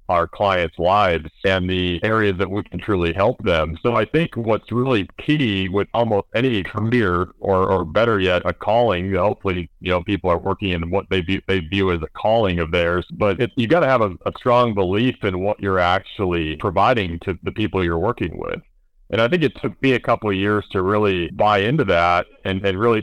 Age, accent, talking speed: 40-59, American, 220 wpm